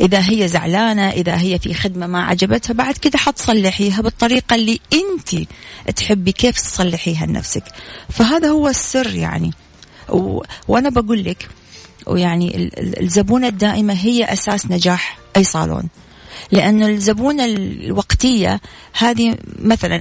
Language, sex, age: Arabic, female, 40-59